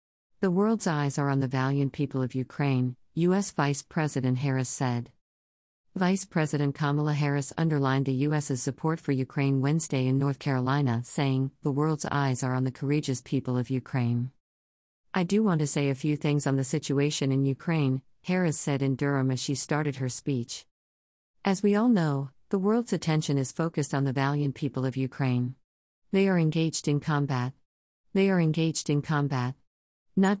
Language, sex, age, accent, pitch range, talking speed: English, female, 50-69, American, 130-155 Hz, 175 wpm